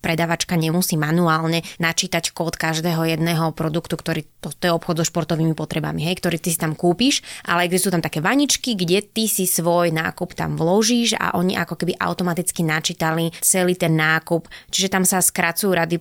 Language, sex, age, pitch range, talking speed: Slovak, female, 20-39, 165-195 Hz, 180 wpm